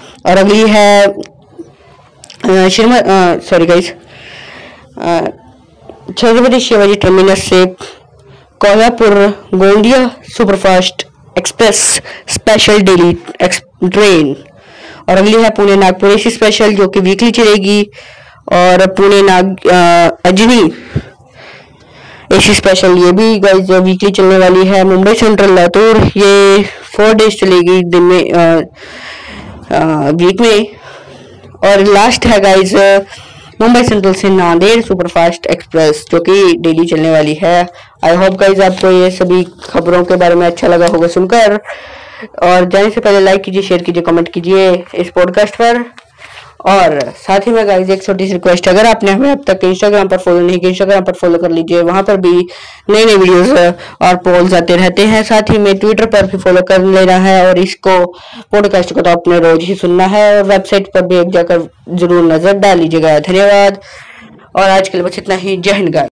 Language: Hindi